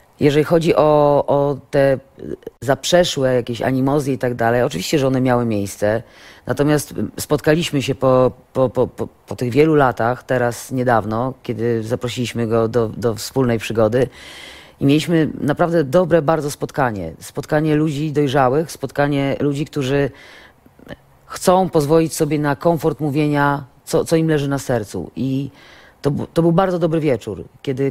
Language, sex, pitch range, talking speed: Polish, female, 125-155 Hz, 140 wpm